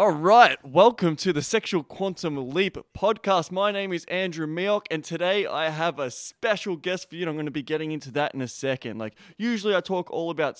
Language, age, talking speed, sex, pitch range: English, 20-39, 215 wpm, male, 150-200 Hz